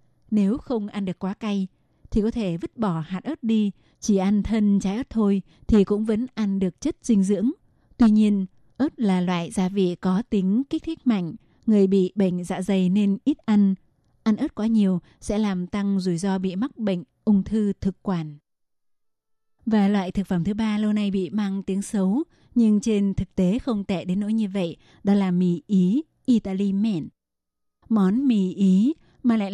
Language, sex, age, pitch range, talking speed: Vietnamese, female, 20-39, 190-225 Hz, 195 wpm